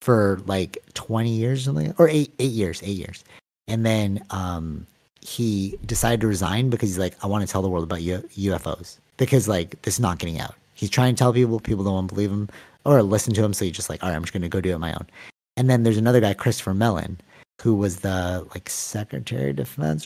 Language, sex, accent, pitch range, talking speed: English, male, American, 95-120 Hz, 240 wpm